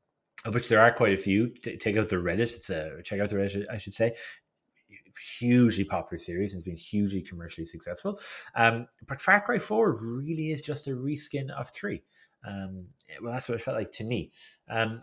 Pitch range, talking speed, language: 100-130 Hz, 205 wpm, English